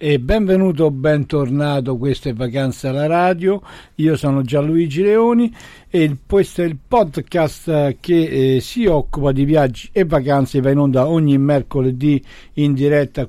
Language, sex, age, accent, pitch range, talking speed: Italian, male, 60-79, native, 125-155 Hz, 150 wpm